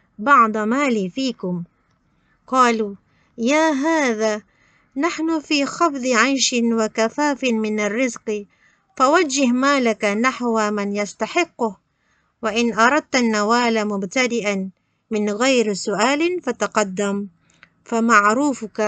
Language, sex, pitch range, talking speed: Malay, female, 195-255 Hz, 85 wpm